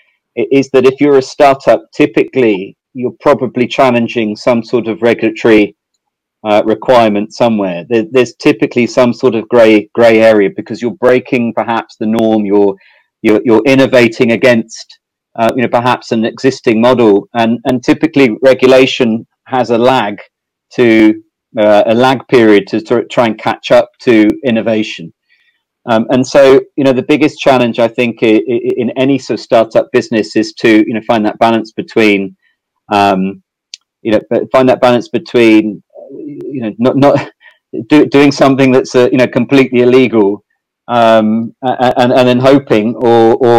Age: 40-59